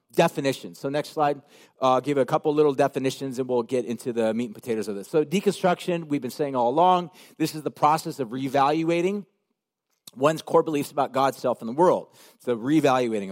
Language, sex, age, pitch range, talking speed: English, male, 40-59, 145-200 Hz, 205 wpm